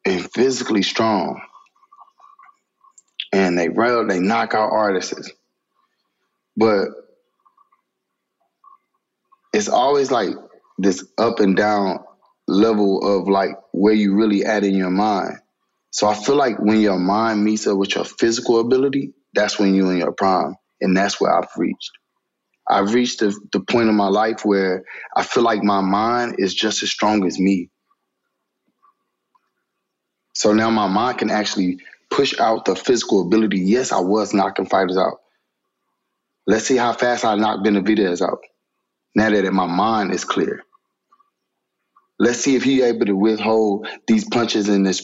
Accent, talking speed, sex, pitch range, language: American, 150 wpm, male, 100-135 Hz, English